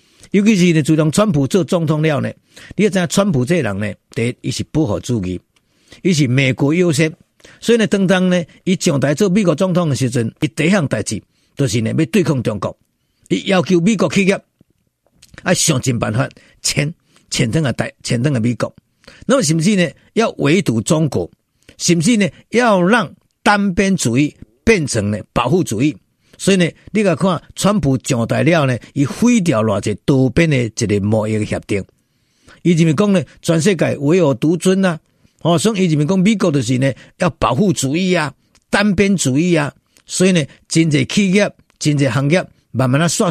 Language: Chinese